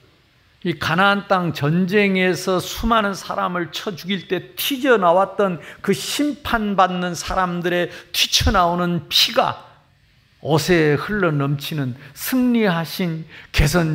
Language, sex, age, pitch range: Korean, male, 50-69, 140-210 Hz